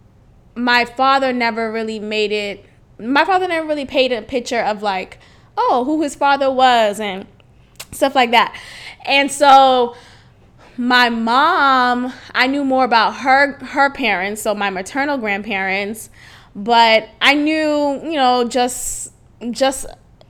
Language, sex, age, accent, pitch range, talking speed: English, female, 10-29, American, 220-270 Hz, 135 wpm